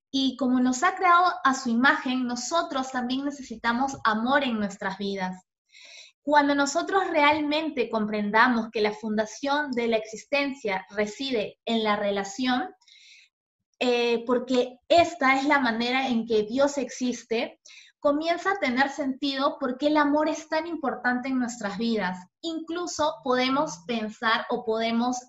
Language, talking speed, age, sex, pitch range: Spanish, 140 wpm, 20-39, female, 225-285 Hz